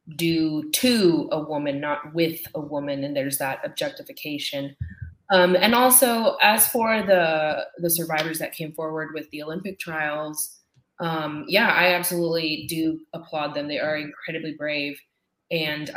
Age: 20-39